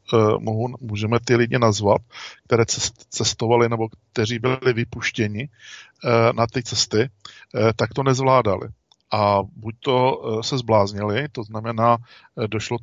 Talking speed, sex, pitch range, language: 110 wpm, male, 110-125 Hz, Czech